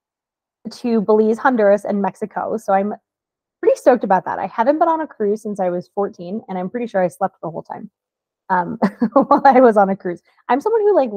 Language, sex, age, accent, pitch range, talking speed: English, female, 20-39, American, 195-255 Hz, 220 wpm